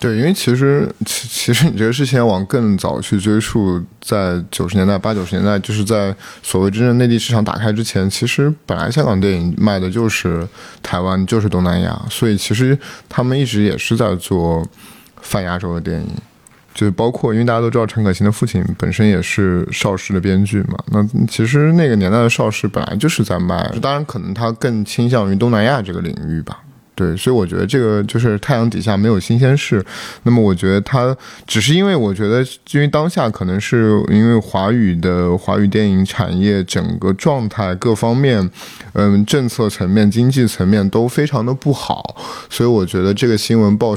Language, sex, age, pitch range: Chinese, male, 20-39, 95-120 Hz